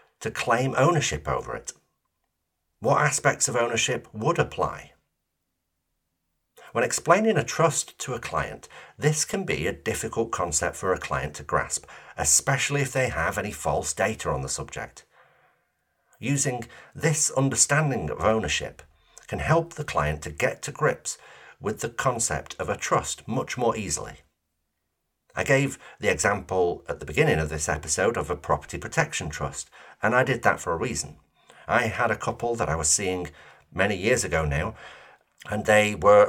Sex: male